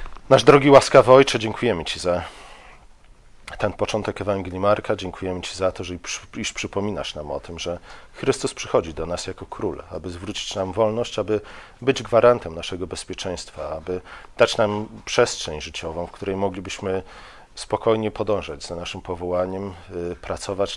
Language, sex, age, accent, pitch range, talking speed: Polish, male, 40-59, native, 90-105 Hz, 145 wpm